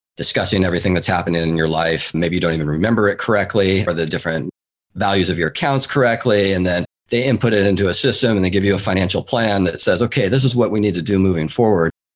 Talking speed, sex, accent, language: 240 wpm, male, American, English